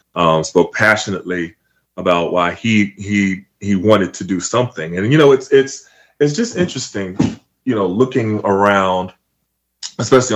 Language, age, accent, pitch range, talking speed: English, 20-39, American, 100-130 Hz, 145 wpm